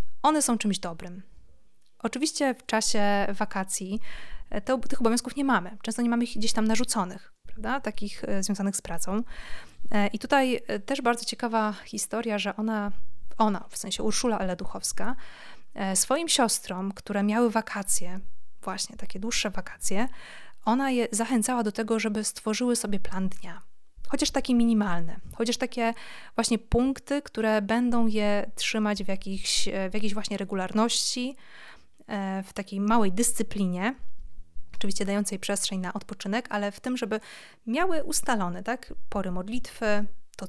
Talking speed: 135 wpm